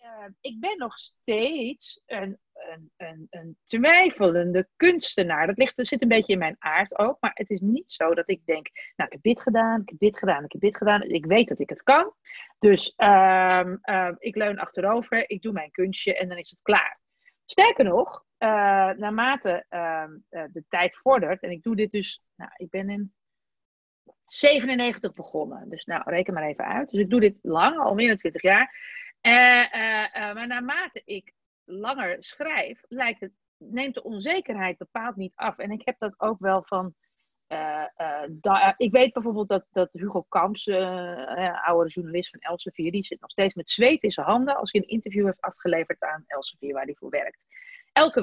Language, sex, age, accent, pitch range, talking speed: Dutch, female, 30-49, Dutch, 180-245 Hz, 195 wpm